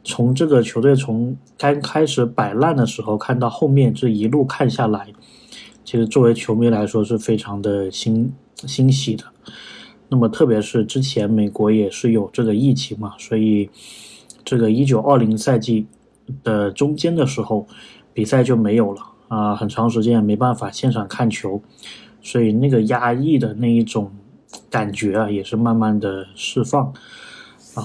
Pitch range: 110-125 Hz